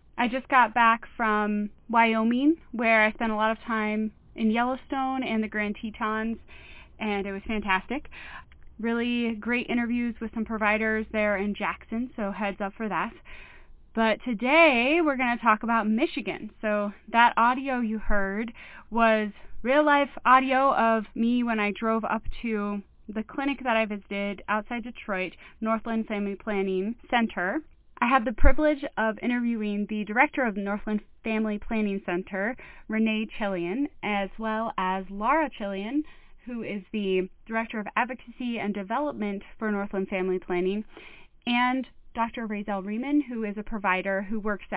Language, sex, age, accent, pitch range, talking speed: English, female, 20-39, American, 205-240 Hz, 150 wpm